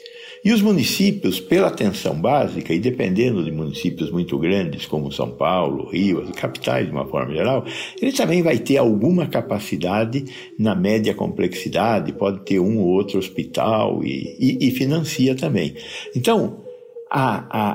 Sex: male